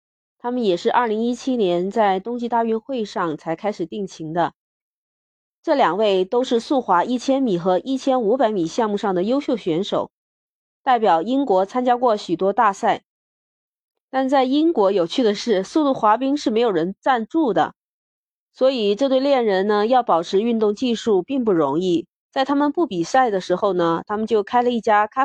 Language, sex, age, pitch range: Chinese, female, 30-49, 190-260 Hz